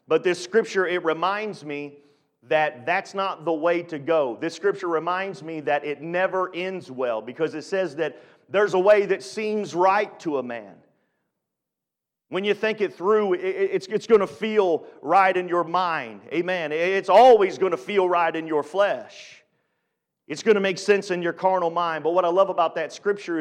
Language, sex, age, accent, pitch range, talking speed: English, male, 40-59, American, 155-195 Hz, 190 wpm